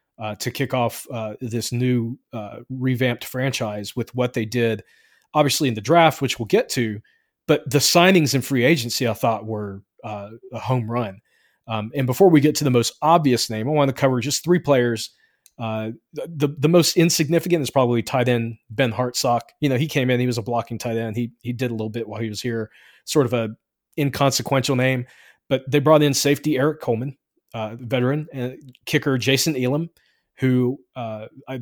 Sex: male